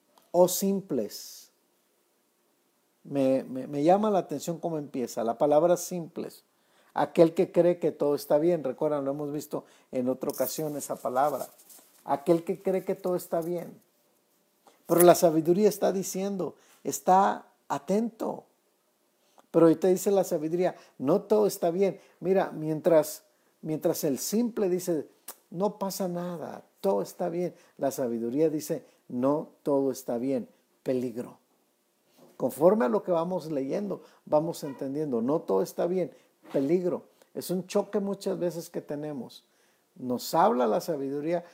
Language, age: Spanish, 50-69